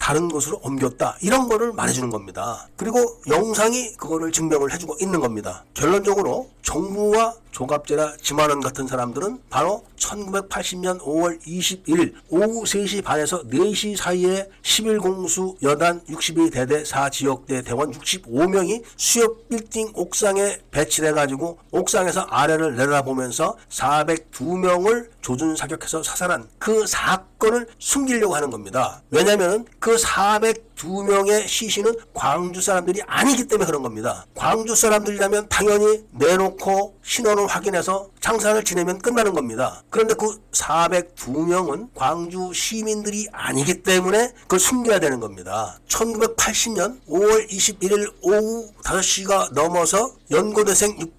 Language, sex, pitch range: Korean, male, 160-215 Hz